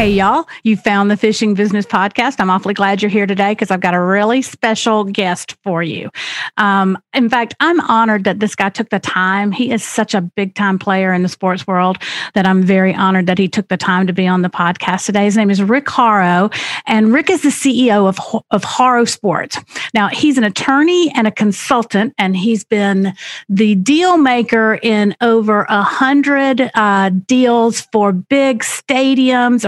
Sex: female